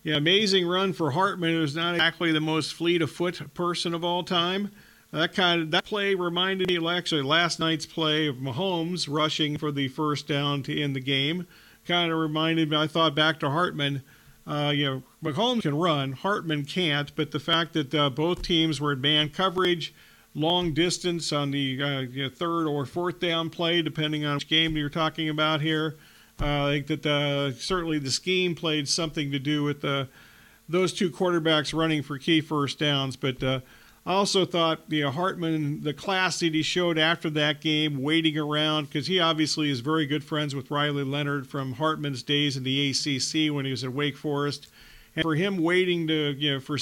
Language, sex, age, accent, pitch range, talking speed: English, male, 50-69, American, 145-170 Hz, 200 wpm